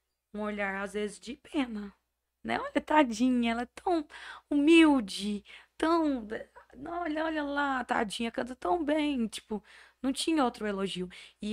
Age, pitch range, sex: 20-39, 180-230 Hz, female